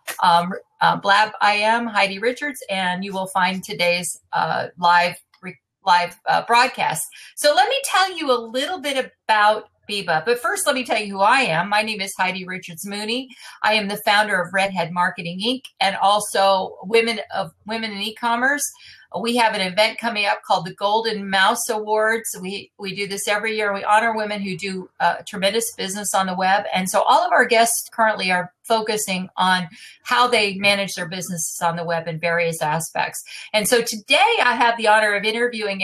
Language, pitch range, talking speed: English, 185-235 Hz, 195 wpm